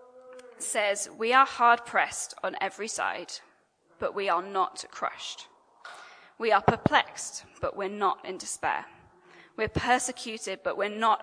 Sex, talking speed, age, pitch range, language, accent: female, 140 wpm, 10-29, 205-260 Hz, English, British